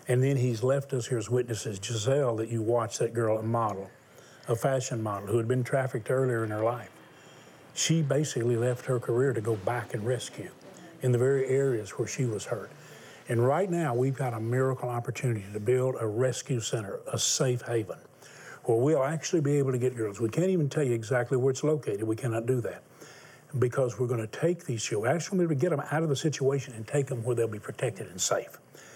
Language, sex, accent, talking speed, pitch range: English, male, American, 220 wpm, 120-150 Hz